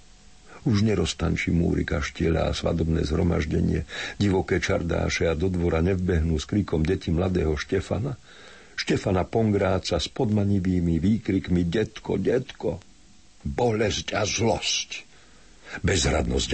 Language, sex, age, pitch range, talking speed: Slovak, male, 60-79, 85-120 Hz, 100 wpm